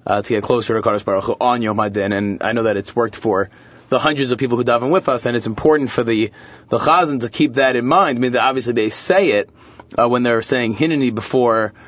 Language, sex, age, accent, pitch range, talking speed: English, male, 30-49, American, 115-140 Hz, 265 wpm